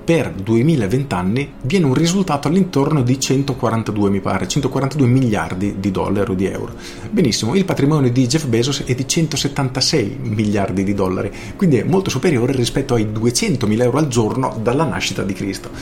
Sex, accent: male, native